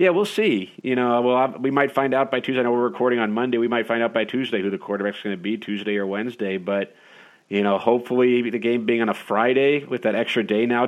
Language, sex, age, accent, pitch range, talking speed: English, male, 40-59, American, 110-125 Hz, 265 wpm